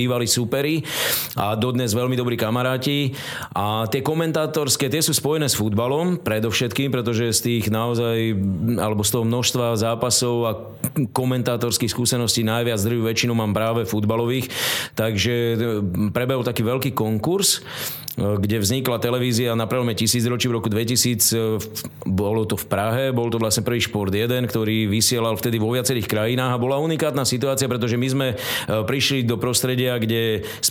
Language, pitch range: Slovak, 115-130 Hz